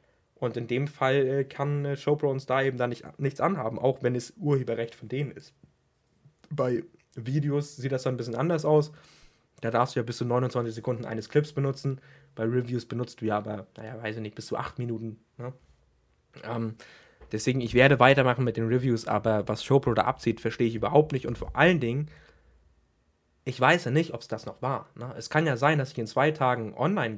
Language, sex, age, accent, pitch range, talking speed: German, male, 20-39, German, 115-145 Hz, 210 wpm